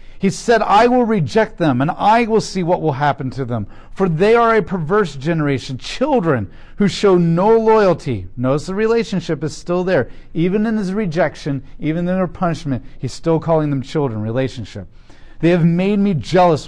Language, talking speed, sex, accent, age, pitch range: English, 185 wpm, male, American, 40-59, 115-170 Hz